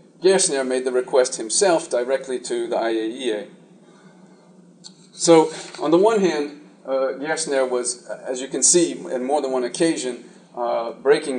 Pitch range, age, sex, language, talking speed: 130-185 Hz, 40-59, male, French, 150 wpm